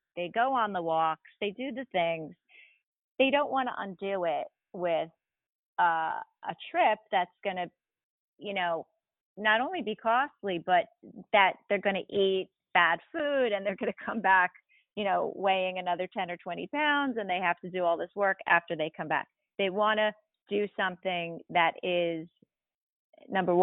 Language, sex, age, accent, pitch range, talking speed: English, female, 30-49, American, 170-210 Hz, 180 wpm